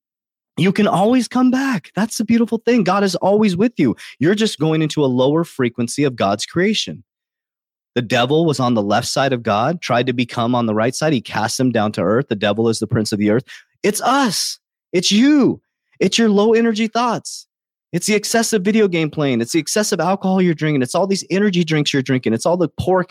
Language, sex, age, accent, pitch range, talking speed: English, male, 30-49, American, 145-205 Hz, 225 wpm